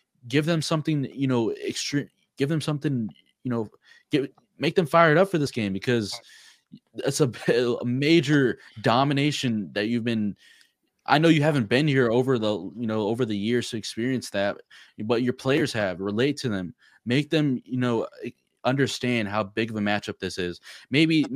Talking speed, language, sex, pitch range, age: 185 wpm, English, male, 95-120 Hz, 20-39